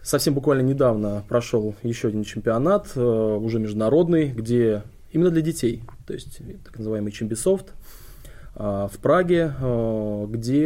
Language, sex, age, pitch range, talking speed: Russian, male, 20-39, 110-130 Hz, 120 wpm